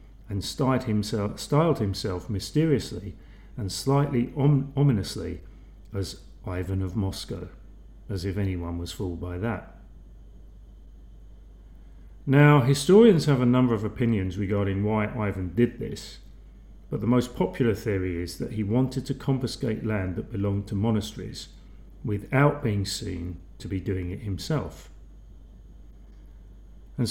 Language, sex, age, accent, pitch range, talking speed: English, male, 40-59, British, 95-120 Hz, 120 wpm